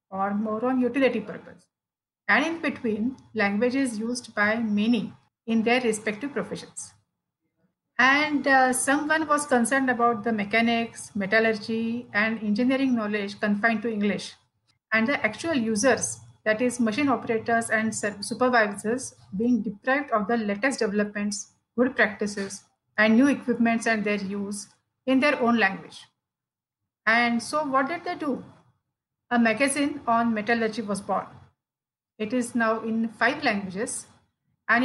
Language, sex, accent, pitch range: Marathi, female, native, 215-255 Hz